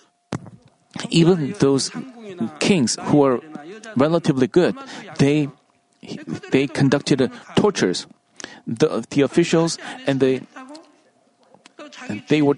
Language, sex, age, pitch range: Korean, male, 40-59, 145-190 Hz